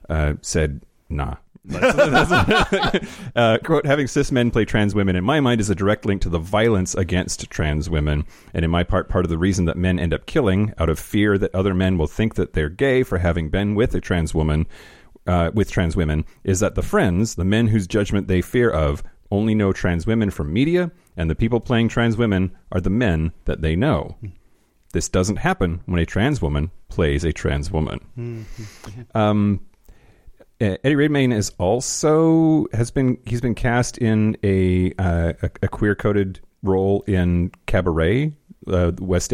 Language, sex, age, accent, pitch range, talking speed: English, male, 30-49, American, 85-110 Hz, 185 wpm